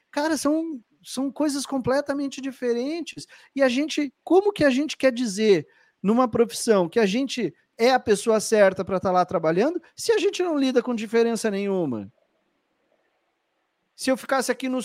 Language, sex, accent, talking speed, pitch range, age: Portuguese, male, Brazilian, 170 wpm, 170-270 Hz, 40-59